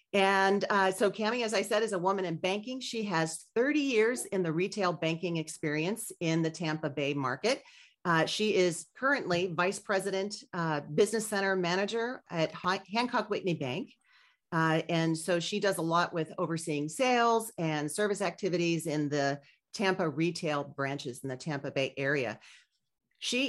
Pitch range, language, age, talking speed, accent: 160-210 Hz, English, 40-59, 165 wpm, American